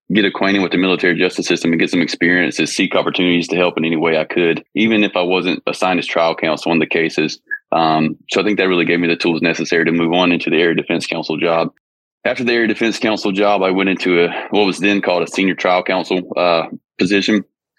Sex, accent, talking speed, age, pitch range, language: male, American, 240 wpm, 20-39, 85-95 Hz, English